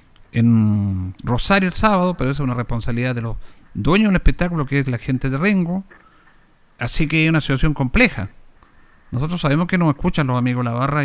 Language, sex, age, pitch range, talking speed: Spanish, male, 50-69, 135-210 Hz, 190 wpm